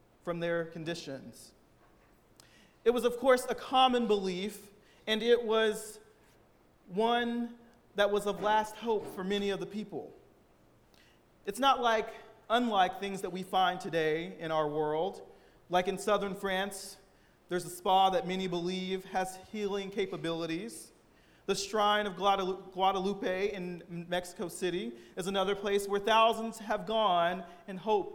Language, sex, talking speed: English, male, 140 wpm